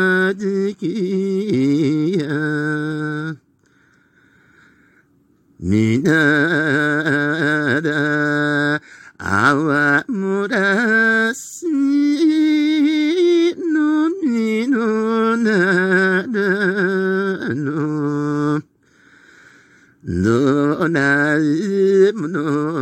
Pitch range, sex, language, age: 150-230 Hz, male, Japanese, 50-69